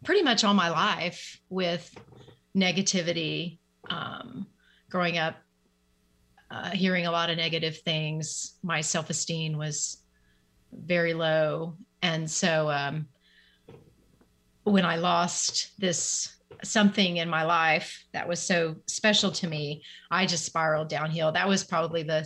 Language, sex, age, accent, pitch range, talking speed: English, female, 30-49, American, 155-190 Hz, 125 wpm